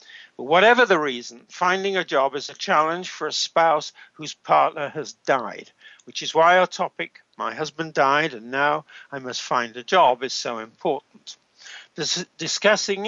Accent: British